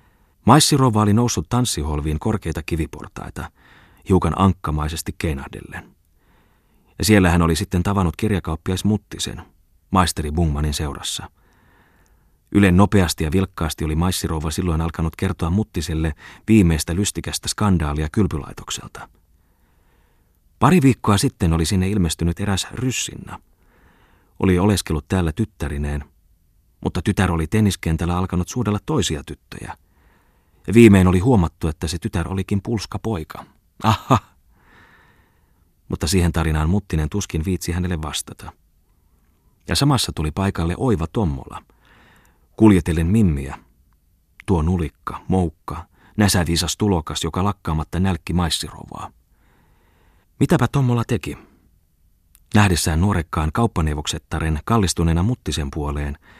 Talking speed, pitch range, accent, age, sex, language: 100 wpm, 80-100 Hz, native, 30-49, male, Finnish